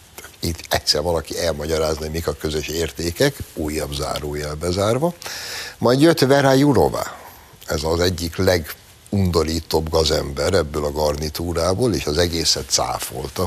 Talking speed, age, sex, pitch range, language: 125 wpm, 60-79, male, 75-95 Hz, Hungarian